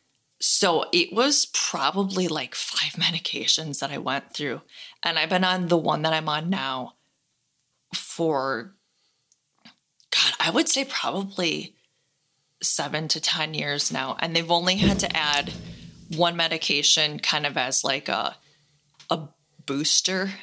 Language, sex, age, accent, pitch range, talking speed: English, female, 20-39, American, 155-195 Hz, 140 wpm